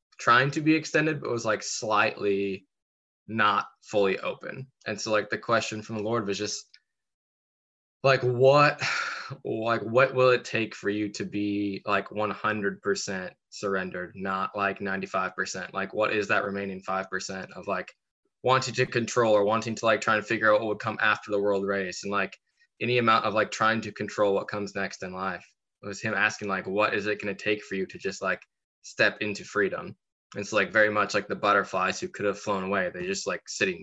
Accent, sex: American, male